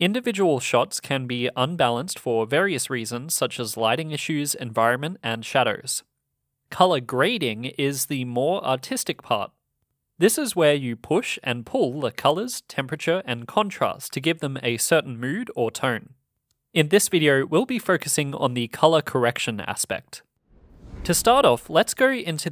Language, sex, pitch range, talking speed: English, male, 125-170 Hz, 155 wpm